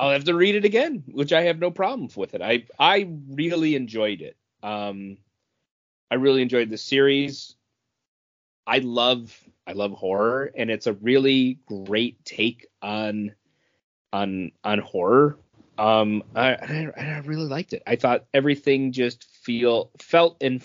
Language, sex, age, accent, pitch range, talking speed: English, male, 30-49, American, 105-140 Hz, 155 wpm